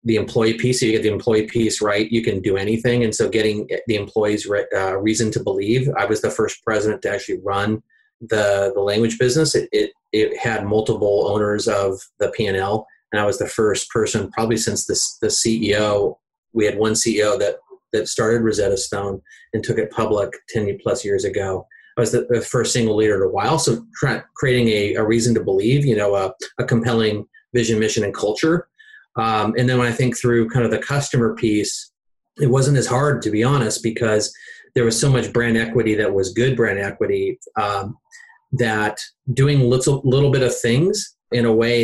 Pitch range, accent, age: 110-145 Hz, American, 30-49